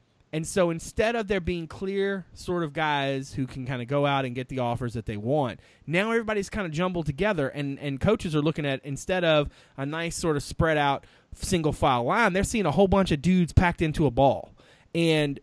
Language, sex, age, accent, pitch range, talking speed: English, male, 20-39, American, 135-175 Hz, 225 wpm